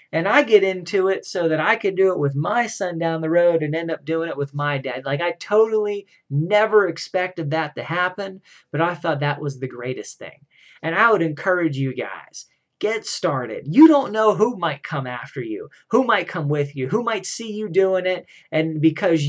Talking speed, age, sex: 220 wpm, 30-49, male